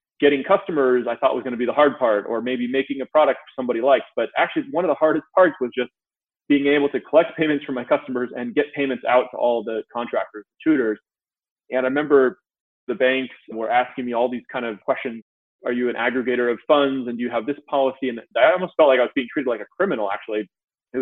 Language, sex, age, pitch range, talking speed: English, male, 20-39, 120-145 Hz, 235 wpm